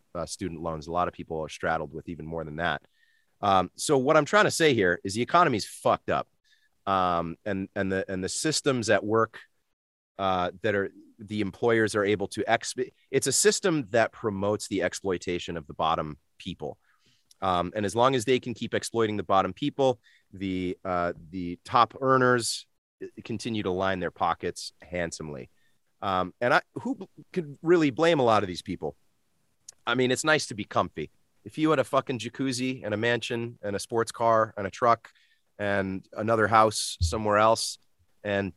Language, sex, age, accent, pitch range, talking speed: English, male, 30-49, American, 95-120 Hz, 185 wpm